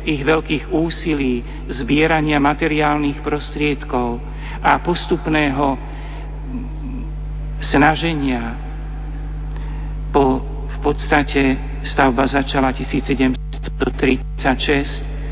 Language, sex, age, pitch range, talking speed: Slovak, male, 50-69, 125-145 Hz, 60 wpm